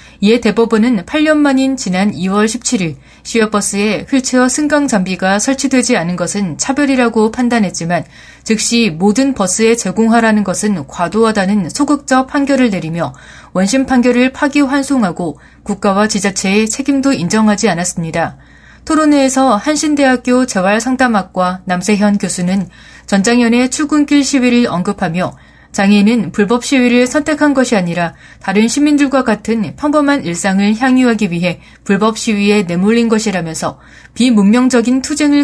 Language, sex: Korean, female